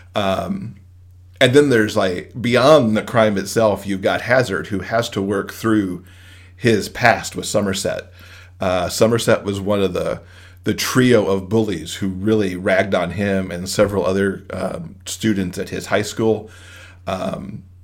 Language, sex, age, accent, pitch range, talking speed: English, male, 40-59, American, 90-110 Hz, 155 wpm